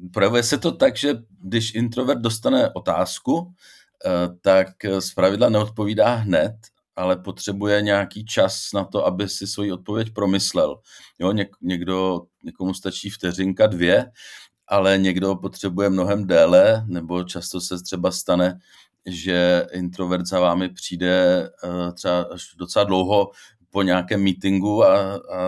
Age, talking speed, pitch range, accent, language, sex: 40-59, 125 wpm, 90-105 Hz, native, Czech, male